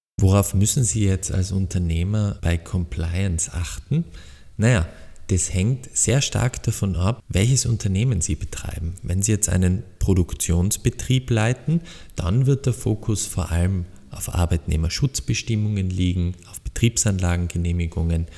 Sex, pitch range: male, 85-110 Hz